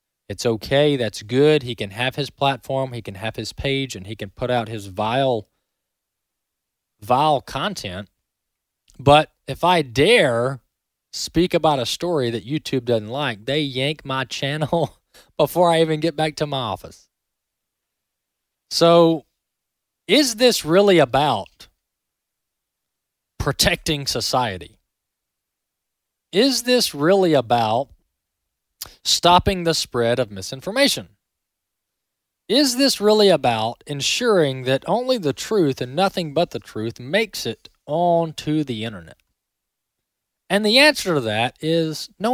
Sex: male